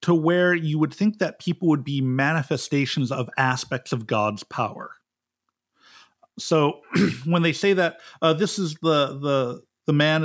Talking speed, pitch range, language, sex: 160 wpm, 130-175 Hz, English, male